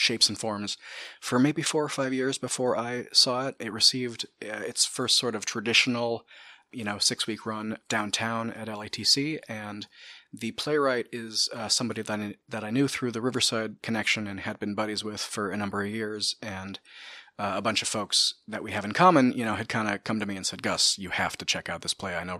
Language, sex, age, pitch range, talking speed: English, male, 30-49, 100-115 Hz, 220 wpm